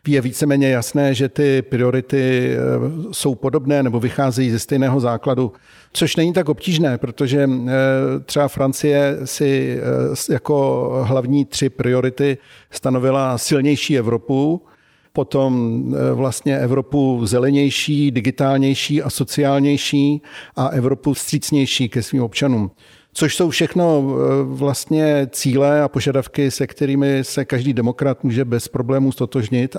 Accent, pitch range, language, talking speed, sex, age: native, 130-145 Hz, Czech, 115 wpm, male, 50-69